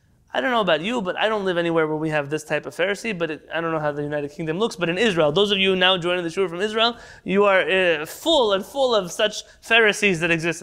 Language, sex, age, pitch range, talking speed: English, male, 30-49, 160-215 Hz, 275 wpm